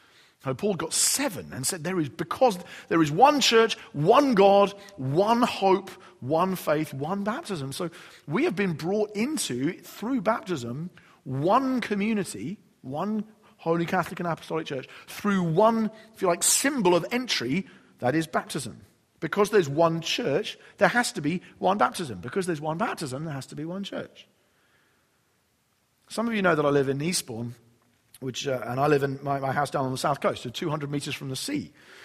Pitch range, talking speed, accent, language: 135-195 Hz, 185 wpm, British, English